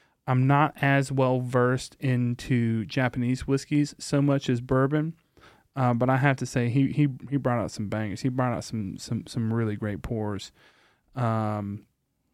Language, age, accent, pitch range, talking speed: English, 30-49, American, 120-135 Hz, 170 wpm